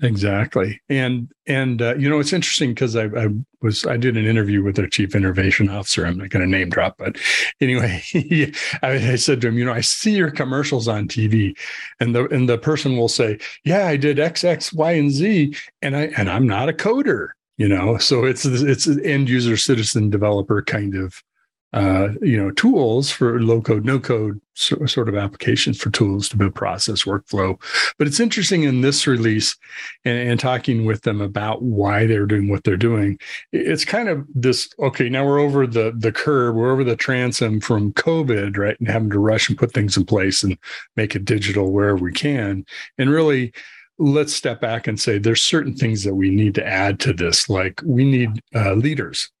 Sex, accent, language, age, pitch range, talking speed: male, American, English, 50-69, 105-135 Hz, 205 wpm